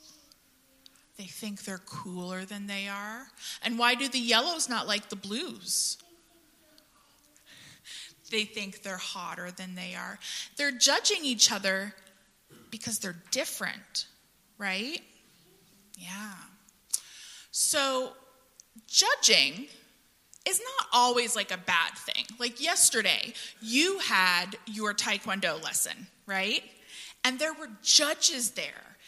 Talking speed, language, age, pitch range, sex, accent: 110 wpm, English, 20-39, 190-255 Hz, female, American